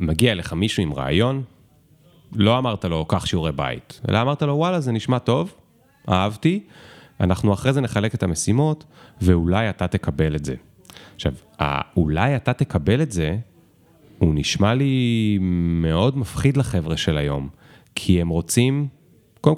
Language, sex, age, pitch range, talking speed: Hebrew, male, 30-49, 90-135 Hz, 150 wpm